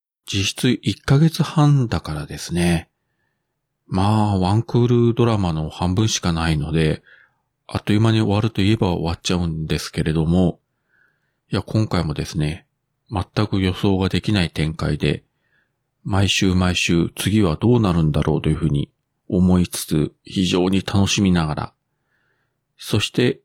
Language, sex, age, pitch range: Japanese, male, 40-59, 90-130 Hz